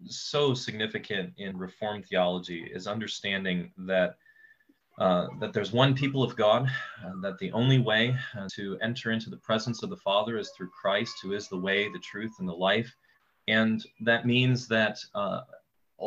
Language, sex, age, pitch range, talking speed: English, male, 30-49, 100-130 Hz, 170 wpm